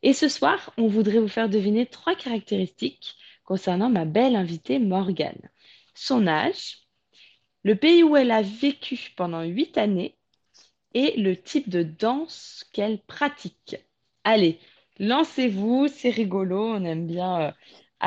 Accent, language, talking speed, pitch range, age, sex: French, French, 135 wpm, 180-250 Hz, 20-39, female